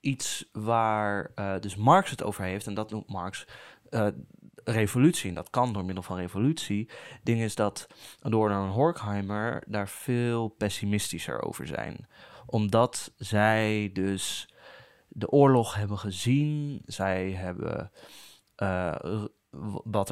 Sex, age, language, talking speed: male, 20-39, English, 130 wpm